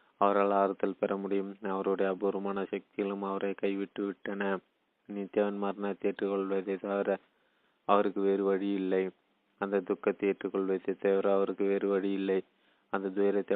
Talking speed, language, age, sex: 125 wpm, Tamil, 20-39, male